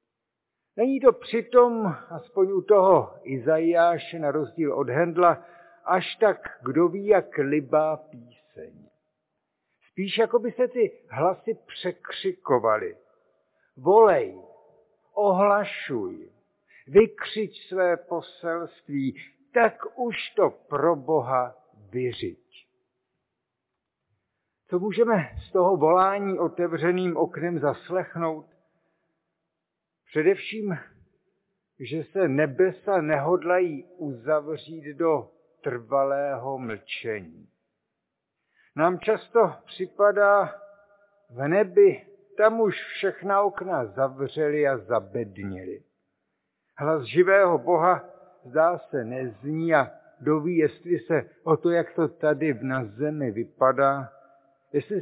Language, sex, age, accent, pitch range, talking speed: Czech, male, 60-79, native, 145-200 Hz, 90 wpm